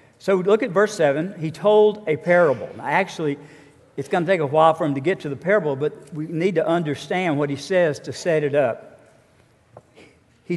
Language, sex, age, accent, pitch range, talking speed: English, male, 50-69, American, 150-195 Hz, 205 wpm